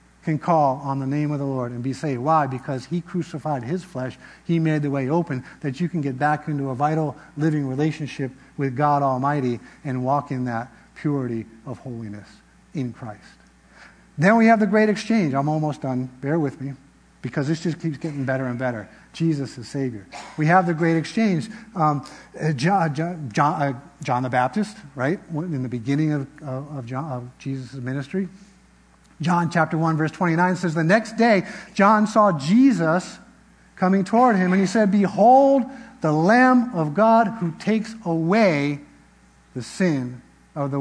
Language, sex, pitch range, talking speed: English, male, 135-180 Hz, 175 wpm